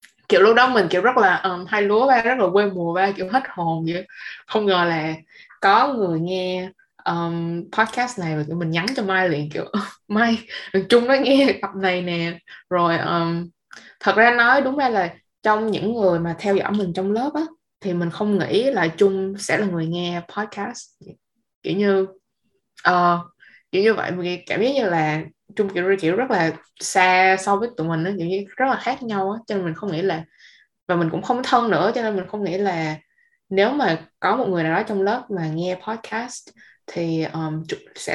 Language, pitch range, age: Vietnamese, 170-215 Hz, 20-39